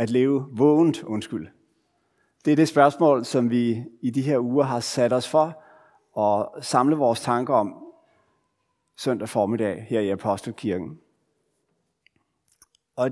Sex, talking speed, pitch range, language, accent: male, 135 wpm, 115-160 Hz, Danish, native